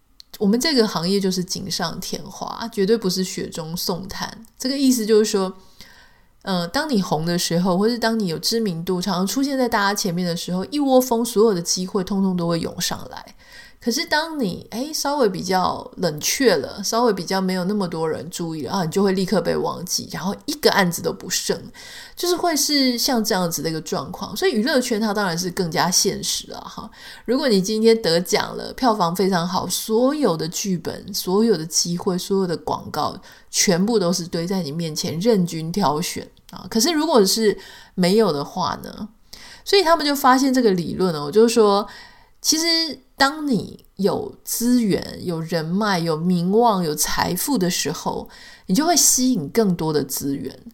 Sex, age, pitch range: female, 20-39, 180-235 Hz